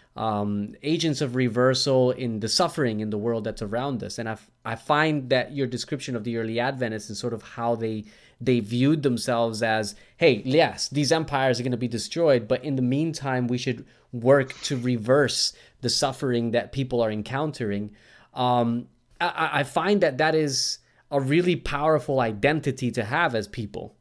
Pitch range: 115-140 Hz